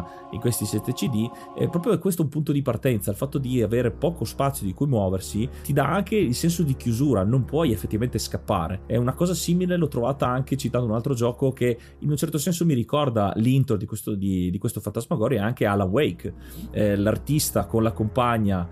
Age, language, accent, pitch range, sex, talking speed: 30-49, Italian, native, 100-125 Hz, male, 205 wpm